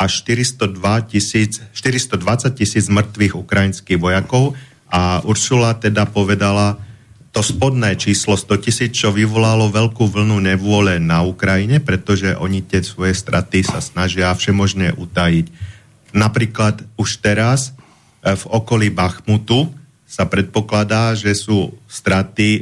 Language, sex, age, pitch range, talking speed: Slovak, male, 40-59, 95-110 Hz, 110 wpm